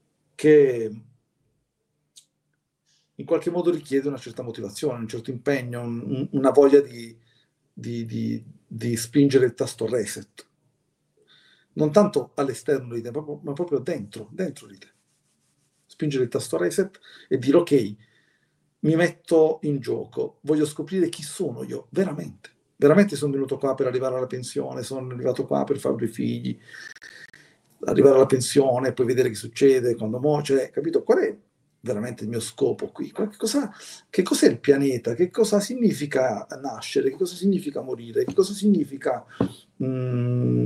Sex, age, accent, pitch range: male, 50-69, native, 130-180 Hz